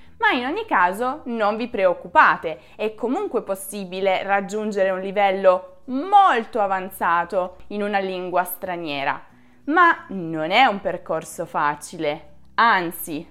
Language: Italian